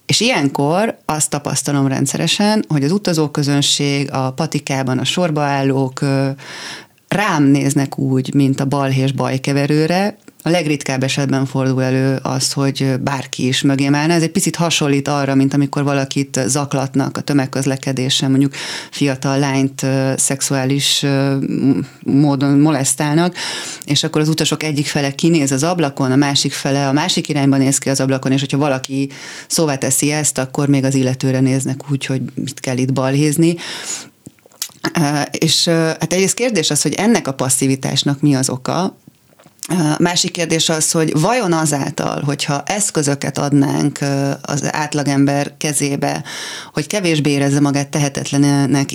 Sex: female